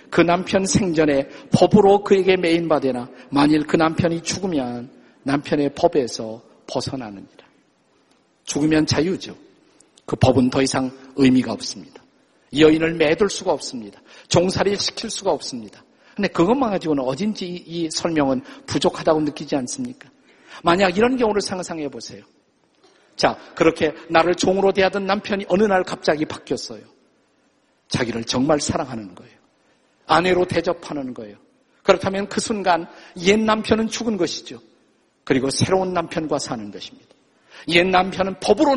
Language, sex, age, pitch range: Korean, male, 50-69, 150-195 Hz